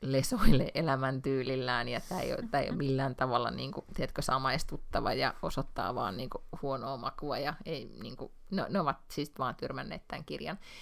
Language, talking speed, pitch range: Finnish, 150 wpm, 130-160 Hz